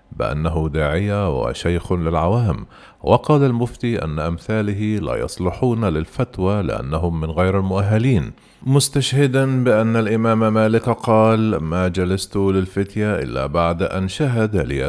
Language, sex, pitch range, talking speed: Arabic, male, 85-110 Hz, 115 wpm